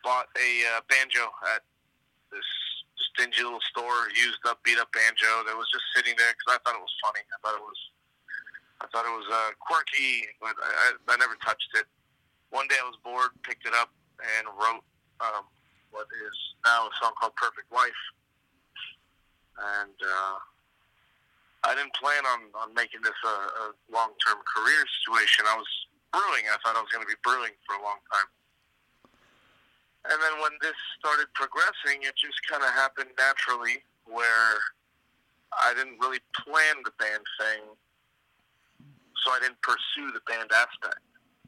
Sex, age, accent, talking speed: male, 30-49, American, 170 wpm